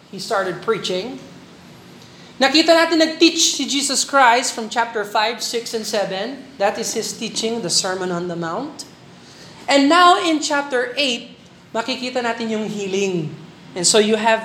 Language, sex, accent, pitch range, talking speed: Filipino, male, native, 195-280 Hz, 160 wpm